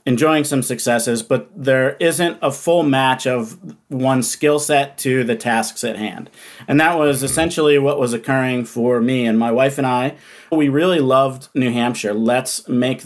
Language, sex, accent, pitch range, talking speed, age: English, male, American, 120-140 Hz, 180 wpm, 40-59